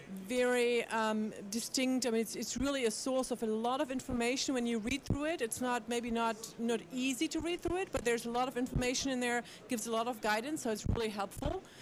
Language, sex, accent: English, female, German